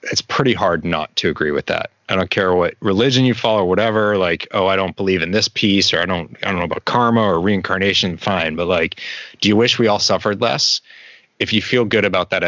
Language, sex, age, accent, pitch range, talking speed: English, male, 30-49, American, 90-110 Hz, 245 wpm